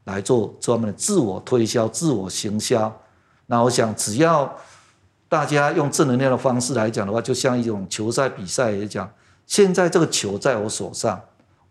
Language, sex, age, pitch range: Chinese, male, 50-69, 105-135 Hz